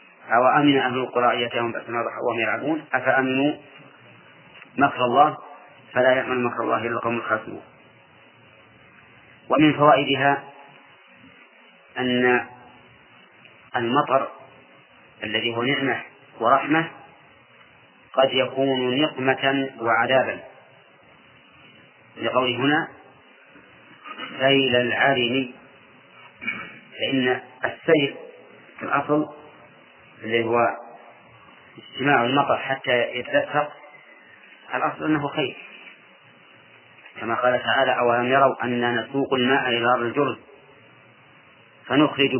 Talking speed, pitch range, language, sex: 80 wpm, 125-145 Hz, Arabic, male